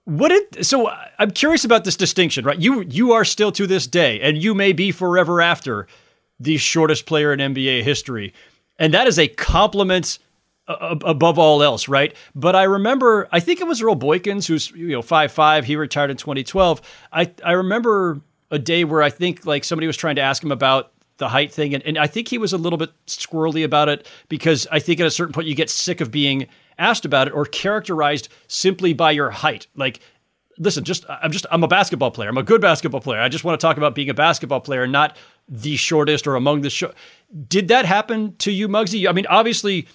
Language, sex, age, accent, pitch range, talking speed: English, male, 30-49, American, 140-180 Hz, 220 wpm